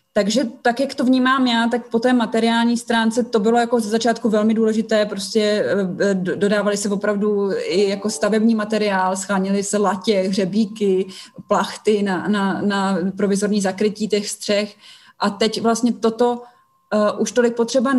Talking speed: 145 wpm